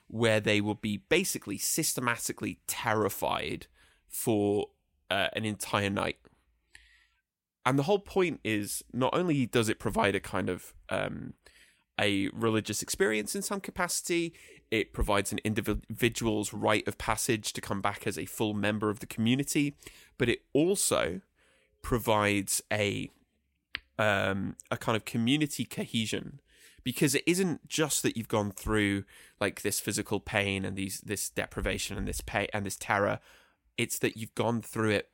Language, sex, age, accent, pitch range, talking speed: English, male, 20-39, British, 100-145 Hz, 150 wpm